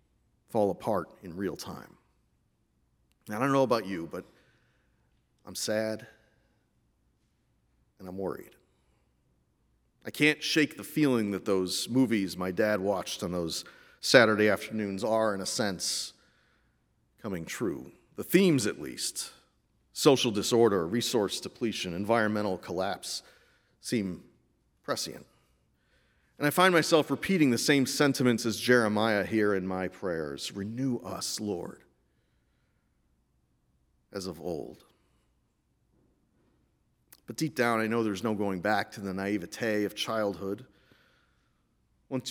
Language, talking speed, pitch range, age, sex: English, 120 wpm, 95-120 Hz, 40-59, male